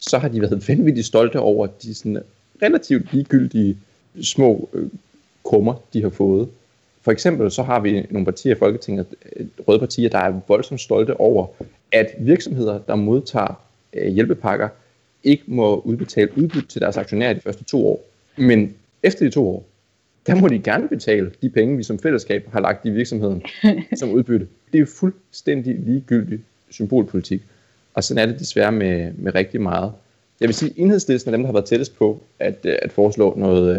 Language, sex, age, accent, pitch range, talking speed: Danish, male, 30-49, native, 100-125 Hz, 175 wpm